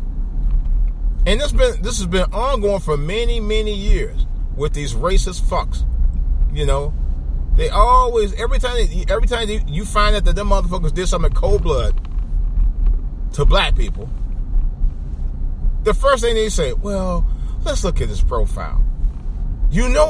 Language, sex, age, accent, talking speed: English, male, 40-59, American, 155 wpm